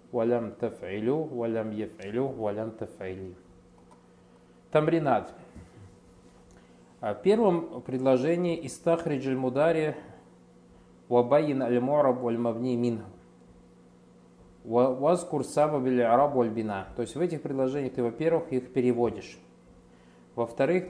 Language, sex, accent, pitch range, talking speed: Russian, male, native, 85-140 Hz, 80 wpm